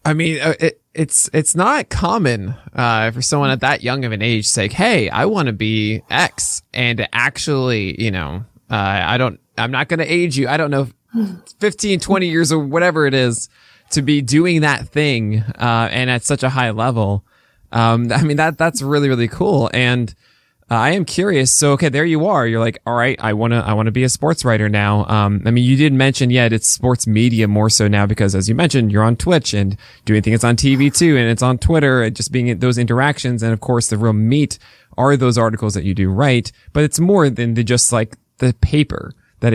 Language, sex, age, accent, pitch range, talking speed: English, male, 20-39, American, 110-145 Hz, 225 wpm